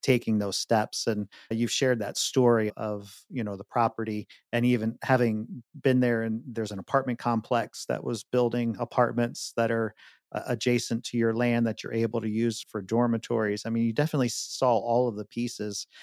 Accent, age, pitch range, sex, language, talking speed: American, 40-59, 115-130 Hz, male, English, 190 wpm